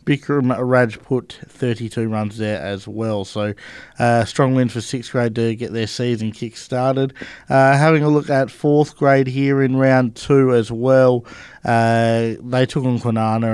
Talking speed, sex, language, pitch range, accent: 160 wpm, male, English, 110-125 Hz, Australian